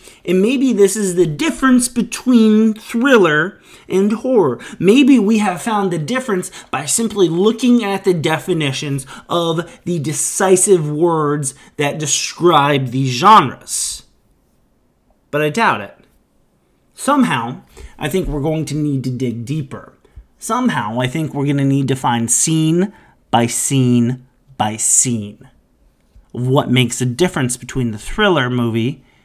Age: 30-49